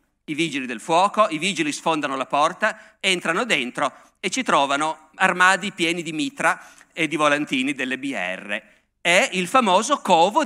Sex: male